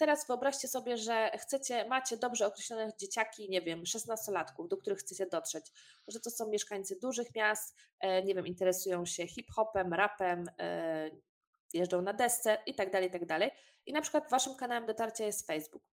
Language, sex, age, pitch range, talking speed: Polish, female, 20-39, 185-235 Hz, 155 wpm